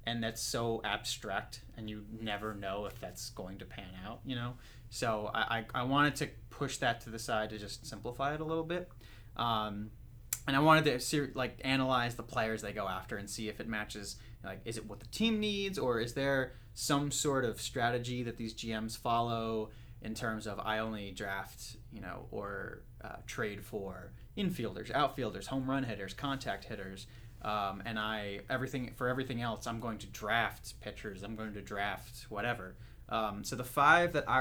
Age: 30-49